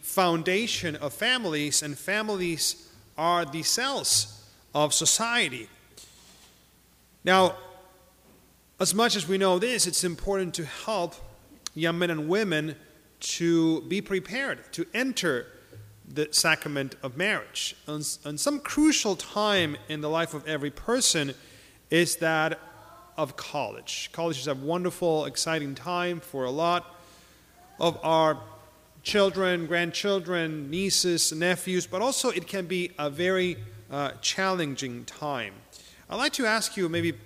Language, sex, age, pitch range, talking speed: English, male, 40-59, 150-185 Hz, 125 wpm